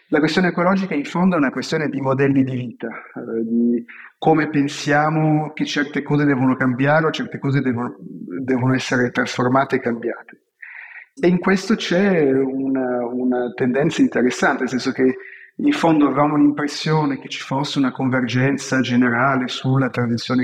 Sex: male